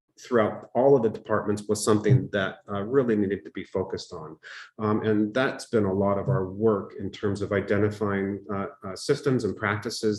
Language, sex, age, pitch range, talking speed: English, male, 40-59, 100-110 Hz, 195 wpm